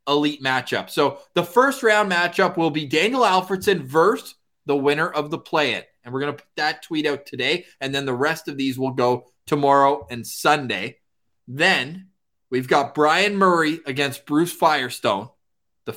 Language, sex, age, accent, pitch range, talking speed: English, male, 20-39, American, 130-175 Hz, 175 wpm